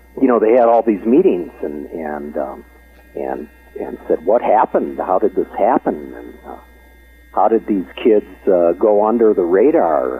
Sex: male